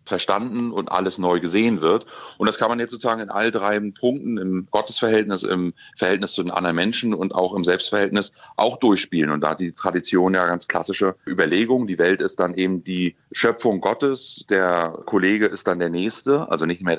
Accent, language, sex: German, German, male